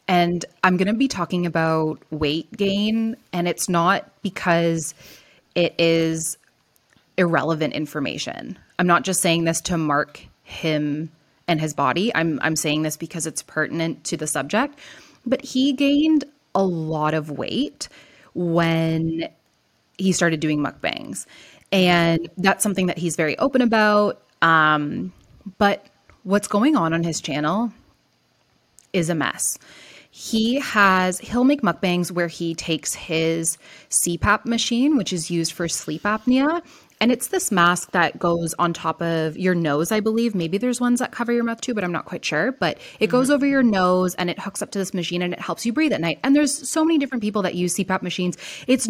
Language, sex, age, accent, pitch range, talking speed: English, female, 20-39, American, 165-225 Hz, 175 wpm